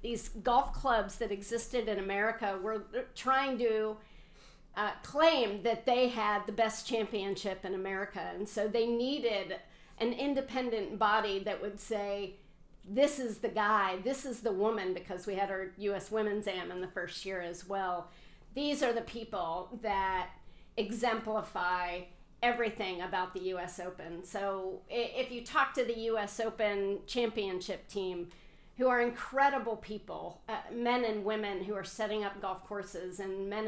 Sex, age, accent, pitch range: female, 50-69, American, 195-230 Hz